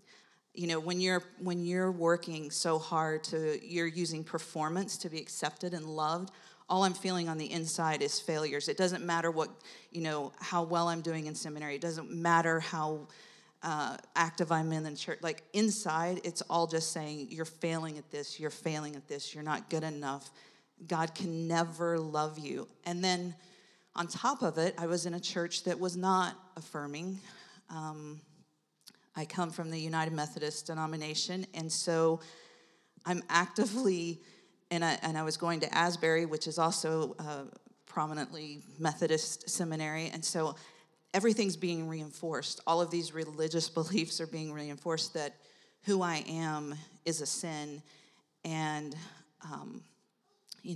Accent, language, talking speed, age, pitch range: American, English, 160 wpm, 40-59, 155-180 Hz